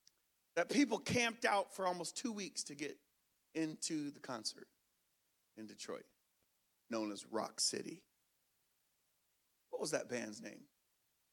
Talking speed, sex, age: 125 wpm, male, 40-59